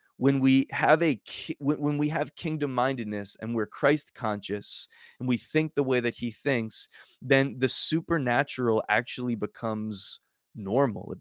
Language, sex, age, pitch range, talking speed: English, male, 20-39, 110-140 Hz, 155 wpm